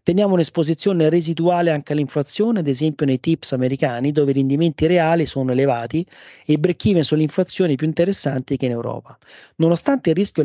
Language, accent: English, Italian